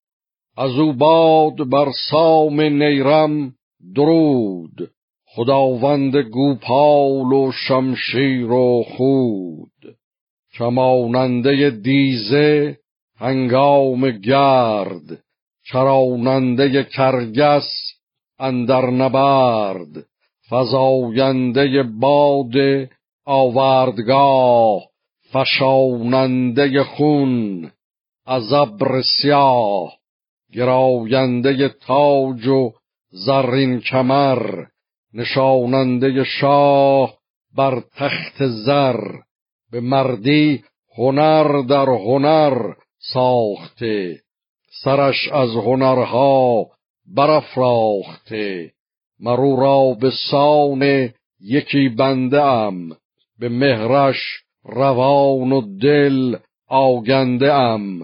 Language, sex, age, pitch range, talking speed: Persian, male, 50-69, 125-140 Hz, 65 wpm